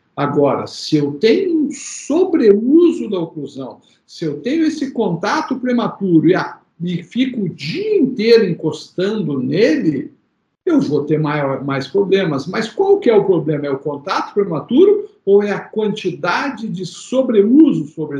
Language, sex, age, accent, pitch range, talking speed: Portuguese, male, 60-79, Brazilian, 155-235 Hz, 150 wpm